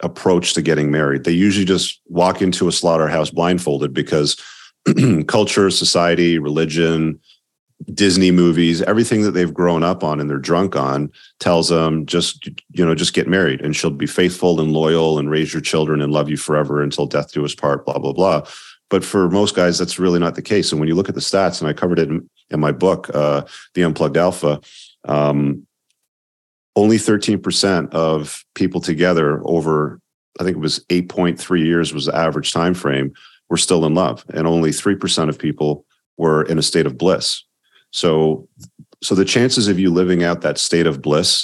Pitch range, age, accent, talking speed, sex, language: 75-90 Hz, 40-59, American, 190 wpm, male, English